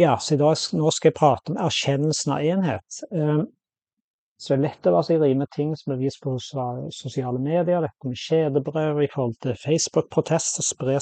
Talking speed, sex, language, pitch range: 160 wpm, male, English, 130-150 Hz